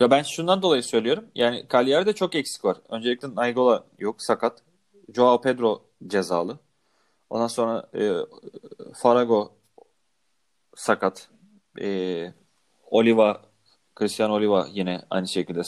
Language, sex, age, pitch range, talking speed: Turkish, male, 30-49, 100-140 Hz, 105 wpm